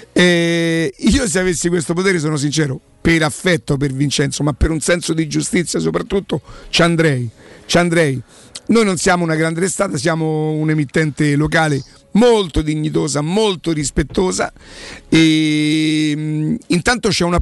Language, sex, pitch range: Italian, male, 155-195 Hz